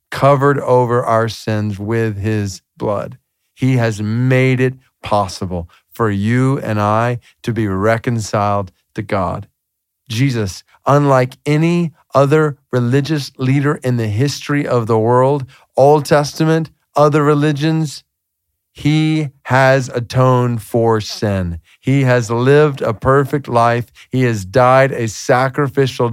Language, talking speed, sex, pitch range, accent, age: English, 120 wpm, male, 110-135 Hz, American, 40-59